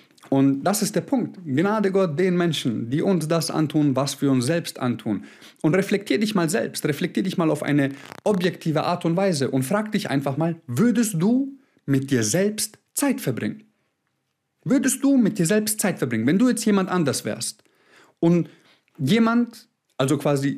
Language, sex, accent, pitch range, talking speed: German, male, German, 145-215 Hz, 180 wpm